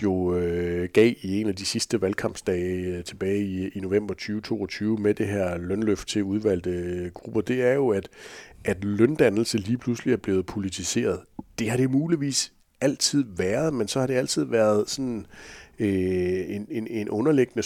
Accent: native